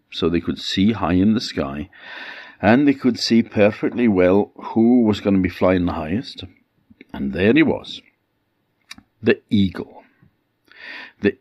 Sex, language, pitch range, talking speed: male, English, 95-125 Hz, 155 wpm